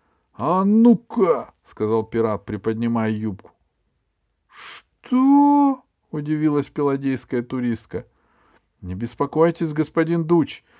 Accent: native